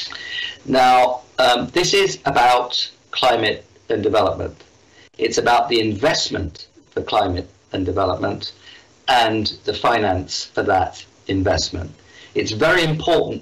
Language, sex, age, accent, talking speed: English, male, 40-59, British, 110 wpm